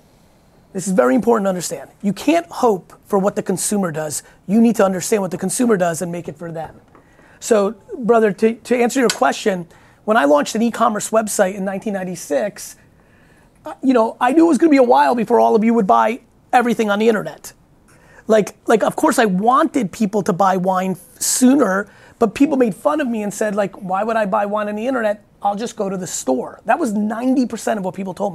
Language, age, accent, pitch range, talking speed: English, 30-49, American, 200-255 Hz, 220 wpm